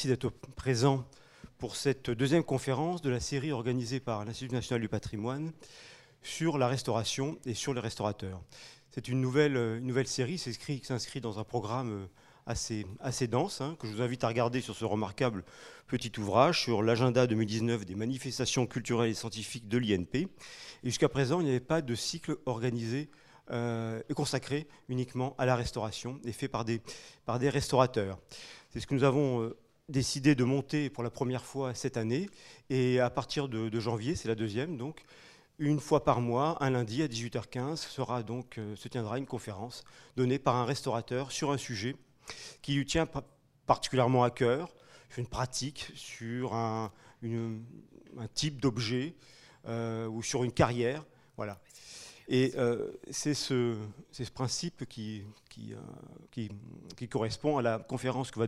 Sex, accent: male, French